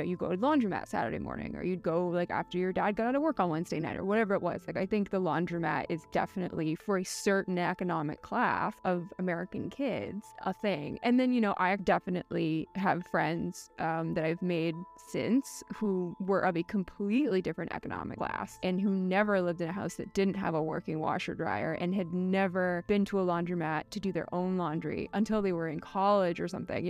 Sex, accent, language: female, American, English